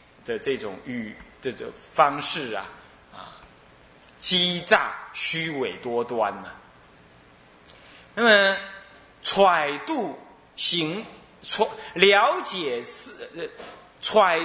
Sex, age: male, 20-39